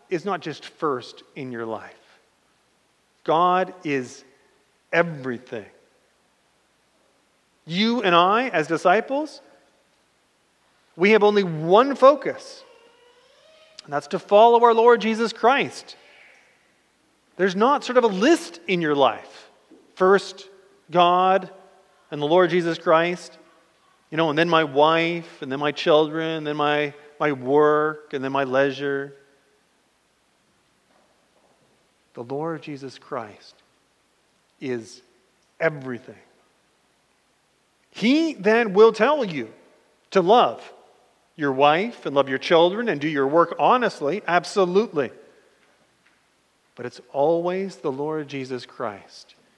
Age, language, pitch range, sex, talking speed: 40-59, English, 140-200 Hz, male, 115 wpm